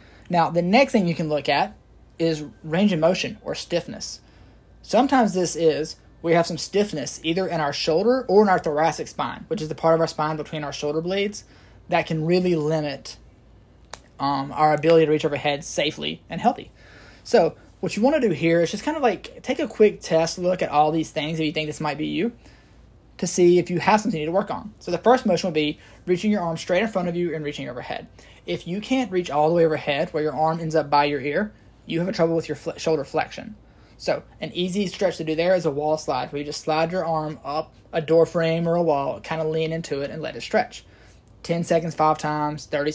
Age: 20-39